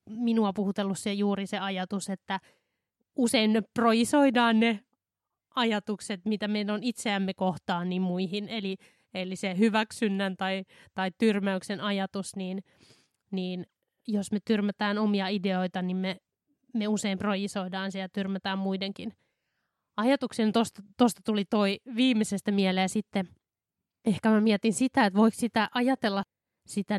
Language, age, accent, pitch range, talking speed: Finnish, 20-39, native, 190-225 Hz, 130 wpm